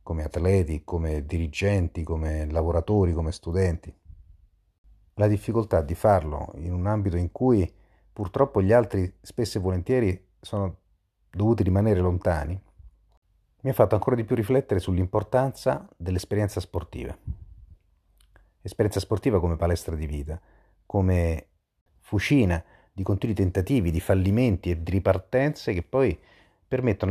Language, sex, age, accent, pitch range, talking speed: Italian, male, 40-59, native, 85-105 Hz, 125 wpm